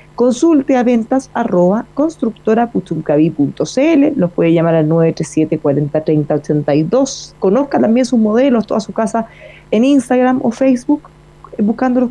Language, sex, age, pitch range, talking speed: Spanish, female, 30-49, 170-235 Hz, 125 wpm